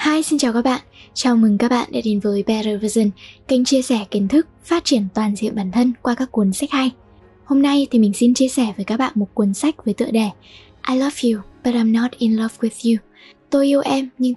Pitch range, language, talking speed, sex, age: 215-265 Hz, Vietnamese, 245 wpm, female, 10-29